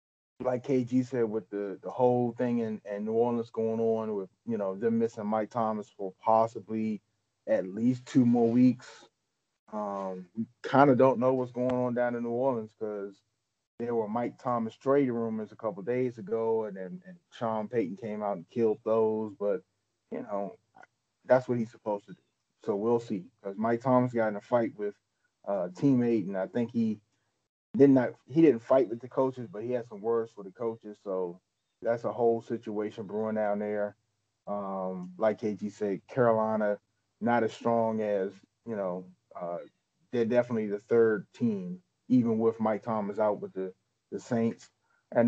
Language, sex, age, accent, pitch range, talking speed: English, male, 30-49, American, 105-120 Hz, 185 wpm